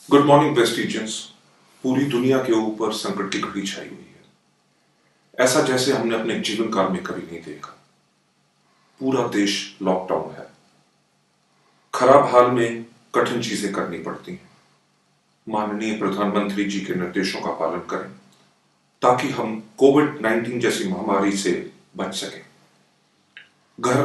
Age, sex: 40-59, male